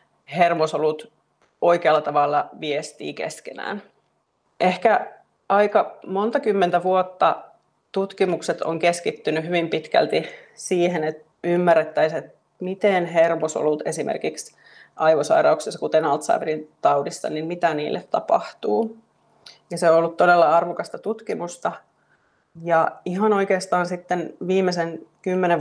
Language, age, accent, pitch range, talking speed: Finnish, 30-49, native, 160-190 Hz, 95 wpm